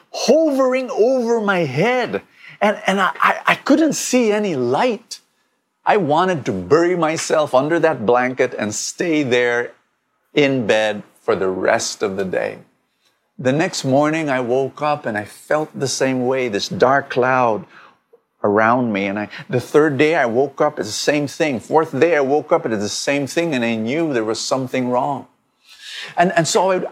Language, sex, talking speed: English, male, 185 wpm